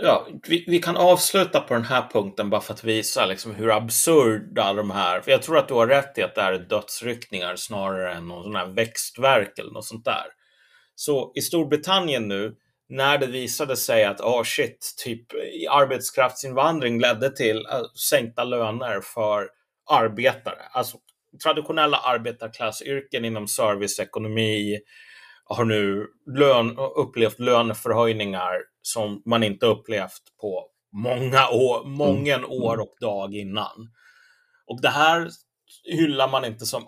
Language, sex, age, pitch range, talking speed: Swedish, male, 30-49, 110-145 Hz, 140 wpm